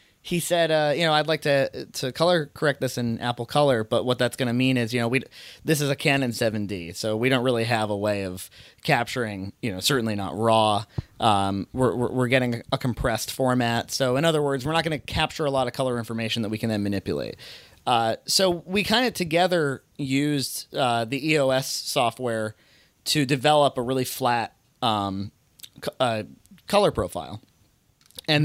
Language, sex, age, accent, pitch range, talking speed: English, male, 30-49, American, 115-150 Hz, 195 wpm